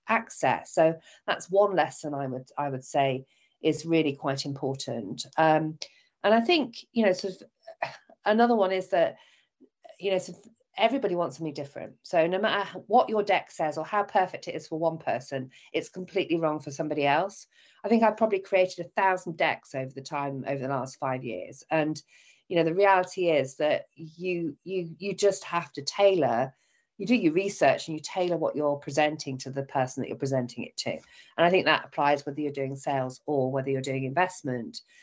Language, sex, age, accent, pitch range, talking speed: English, female, 40-59, British, 140-190 Hz, 200 wpm